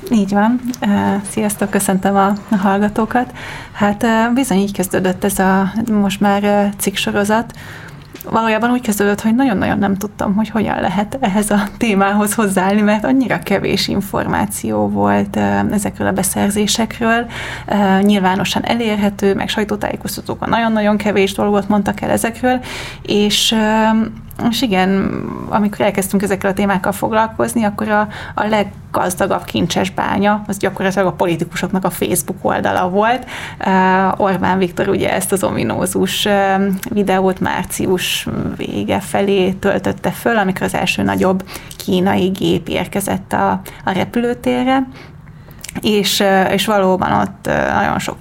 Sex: female